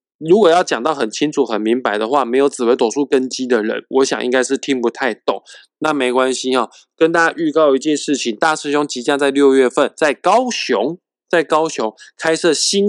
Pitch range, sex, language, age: 125-160 Hz, male, Chinese, 20-39